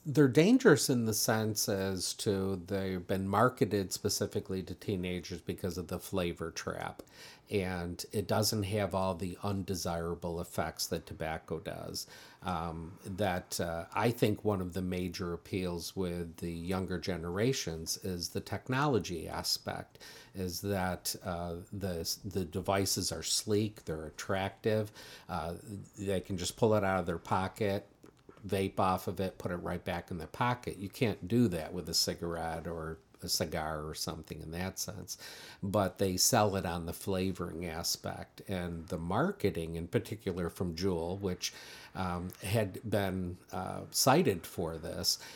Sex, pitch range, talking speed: male, 85-105 Hz, 155 wpm